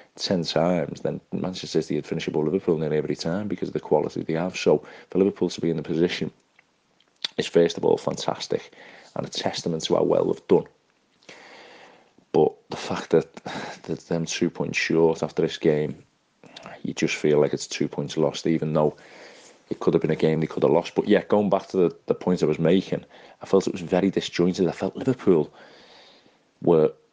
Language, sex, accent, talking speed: English, male, British, 205 wpm